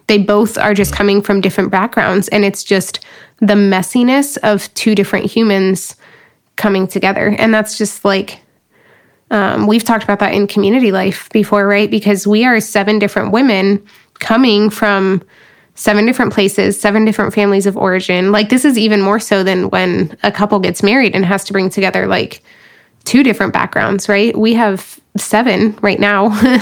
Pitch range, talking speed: 200-220 Hz, 170 wpm